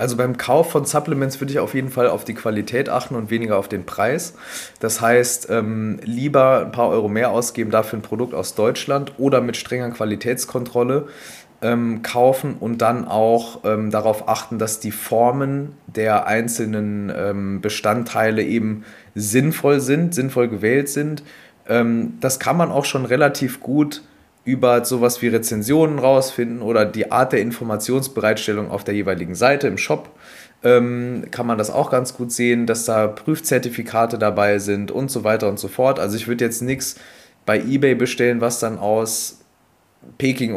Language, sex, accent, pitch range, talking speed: German, male, German, 110-130 Hz, 165 wpm